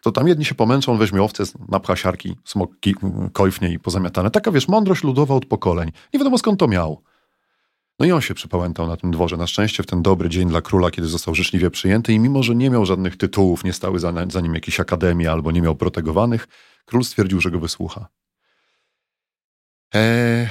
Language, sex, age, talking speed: Polish, male, 40-59, 195 wpm